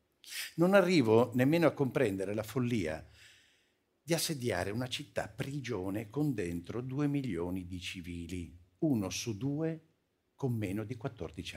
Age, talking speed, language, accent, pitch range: 50-69, 130 wpm, Italian, native, 100-150 Hz